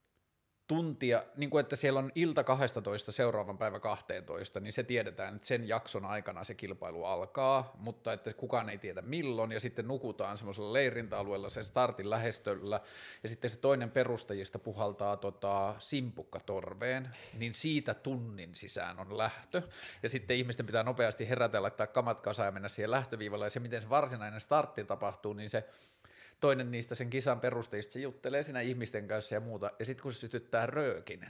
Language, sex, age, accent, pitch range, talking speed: Finnish, male, 30-49, native, 105-125 Hz, 175 wpm